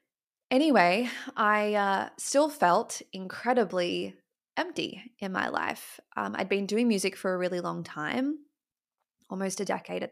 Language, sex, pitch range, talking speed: English, female, 180-230 Hz, 140 wpm